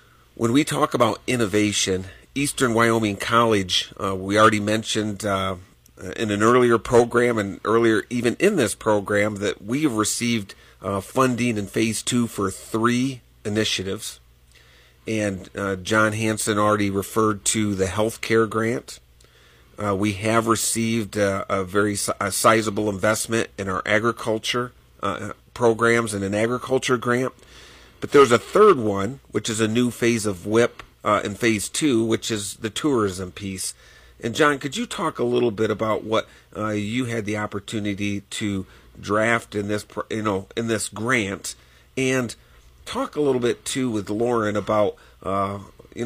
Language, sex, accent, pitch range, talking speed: English, male, American, 100-115 Hz, 155 wpm